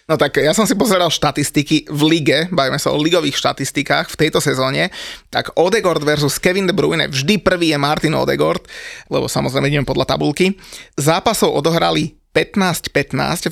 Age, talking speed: 30-49, 160 wpm